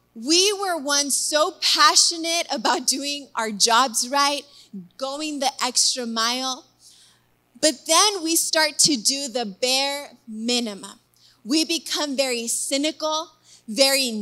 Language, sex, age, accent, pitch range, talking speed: English, female, 20-39, American, 235-305 Hz, 120 wpm